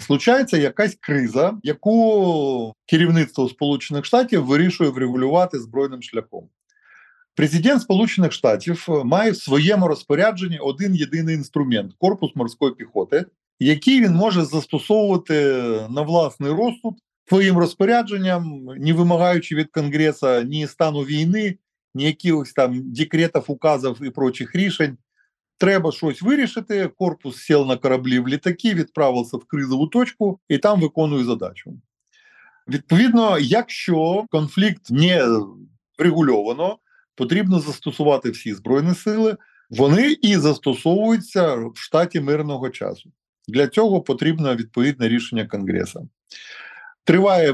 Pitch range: 140-190 Hz